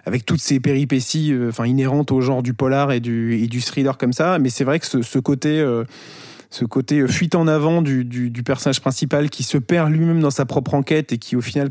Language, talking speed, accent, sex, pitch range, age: French, 245 wpm, French, male, 120-145 Hz, 20-39